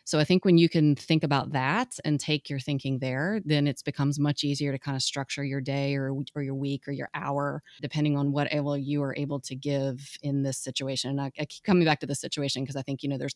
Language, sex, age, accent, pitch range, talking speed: English, female, 30-49, American, 140-150 Hz, 260 wpm